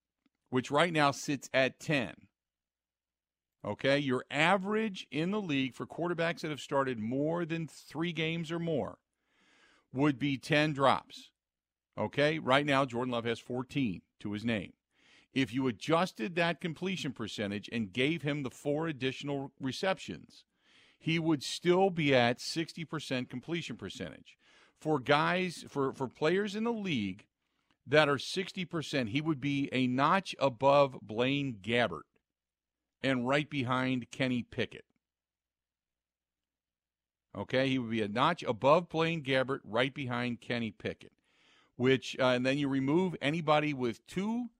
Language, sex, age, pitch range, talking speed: English, male, 50-69, 120-155 Hz, 140 wpm